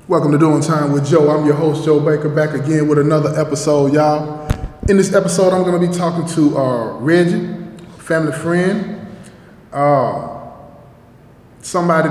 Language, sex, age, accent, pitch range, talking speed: English, male, 20-39, American, 125-155 Hz, 160 wpm